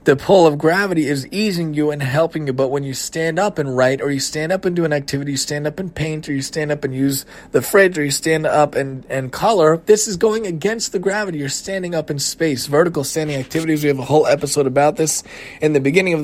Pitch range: 145-180 Hz